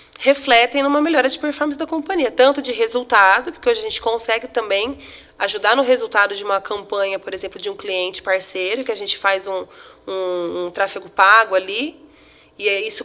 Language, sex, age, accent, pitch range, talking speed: Portuguese, female, 20-39, Brazilian, 205-285 Hz, 185 wpm